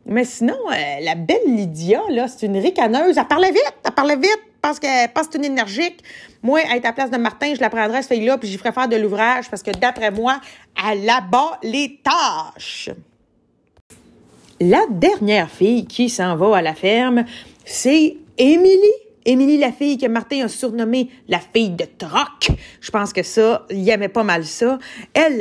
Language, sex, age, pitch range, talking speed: Bengali, female, 40-59, 215-290 Hz, 185 wpm